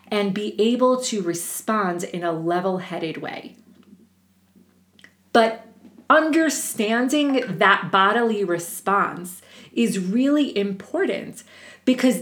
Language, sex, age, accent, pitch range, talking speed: English, female, 30-49, American, 200-255 Hz, 90 wpm